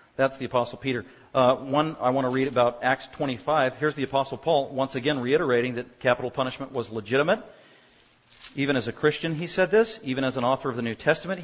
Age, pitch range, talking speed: 40-59, 130-175 Hz, 210 wpm